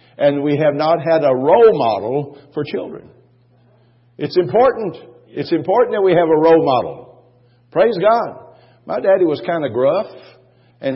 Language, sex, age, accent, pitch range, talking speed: English, male, 50-69, American, 130-170 Hz, 160 wpm